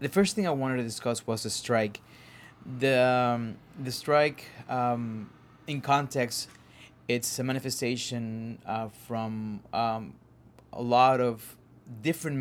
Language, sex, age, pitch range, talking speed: English, male, 20-39, 110-125 Hz, 130 wpm